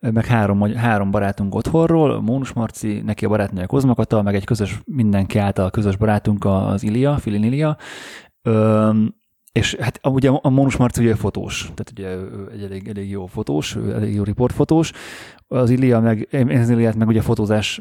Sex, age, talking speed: male, 20-39, 165 wpm